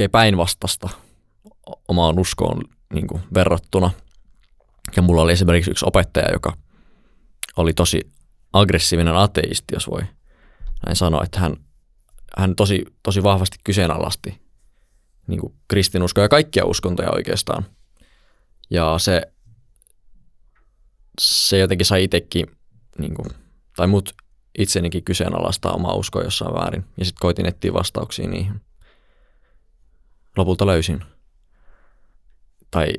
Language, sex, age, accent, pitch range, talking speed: Finnish, male, 20-39, native, 80-95 Hz, 105 wpm